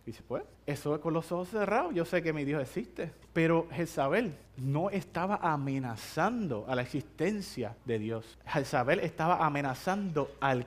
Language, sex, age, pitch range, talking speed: English, male, 30-49, 130-210 Hz, 165 wpm